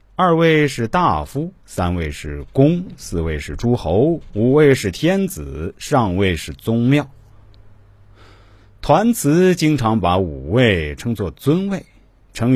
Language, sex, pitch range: Chinese, male, 95-145 Hz